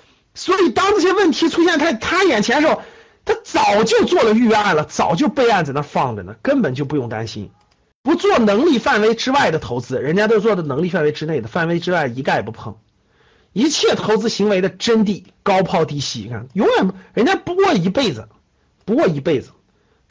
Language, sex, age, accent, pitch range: Chinese, male, 50-69, native, 140-225 Hz